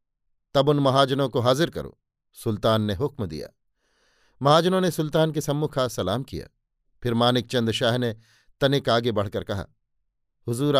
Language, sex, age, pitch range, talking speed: Hindi, male, 50-69, 115-135 Hz, 155 wpm